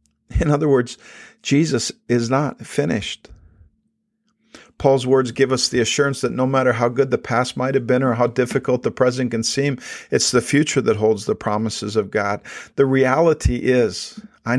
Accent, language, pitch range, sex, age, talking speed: American, English, 110-135 Hz, male, 50-69, 175 wpm